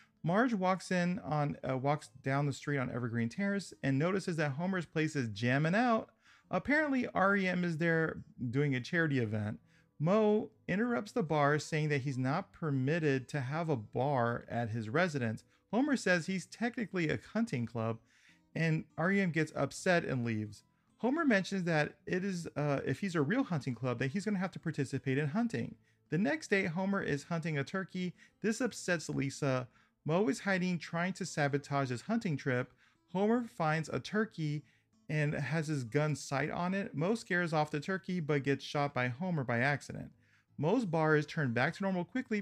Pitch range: 135-190 Hz